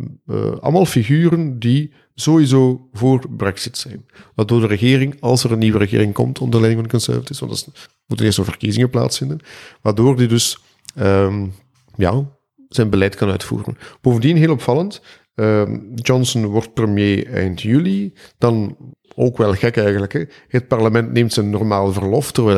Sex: male